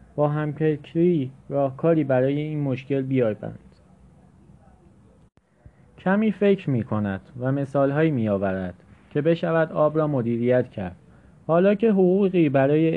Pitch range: 130-165 Hz